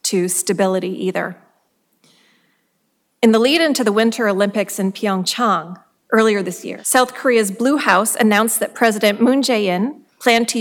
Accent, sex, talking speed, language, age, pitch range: American, female, 140 wpm, English, 40-59, 200-240 Hz